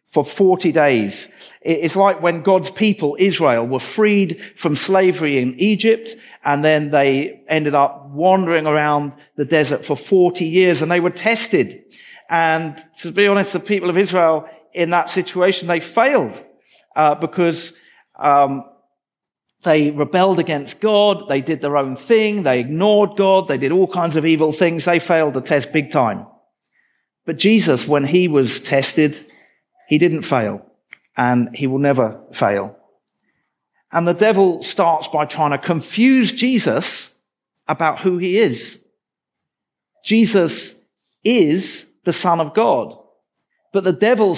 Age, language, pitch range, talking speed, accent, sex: 50-69, English, 150-200 Hz, 145 wpm, British, male